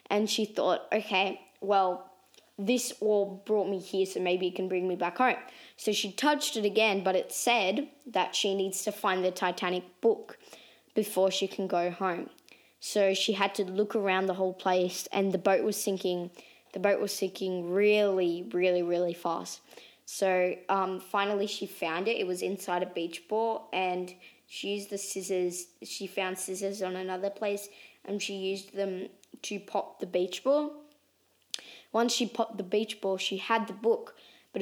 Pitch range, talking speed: 185-210 Hz, 180 wpm